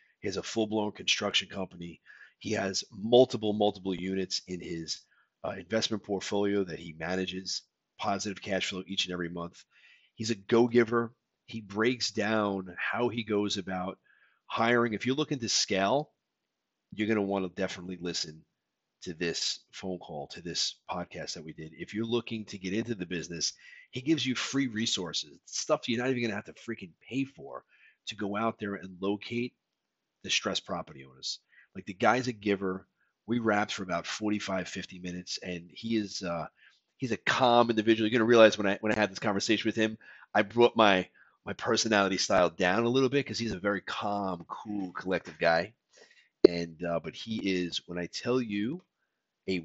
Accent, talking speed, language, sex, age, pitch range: American, 185 wpm, English, male, 40-59, 90-115 Hz